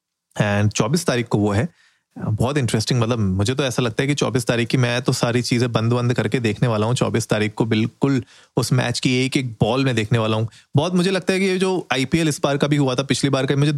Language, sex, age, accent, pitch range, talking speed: Hindi, male, 30-49, native, 120-145 Hz, 260 wpm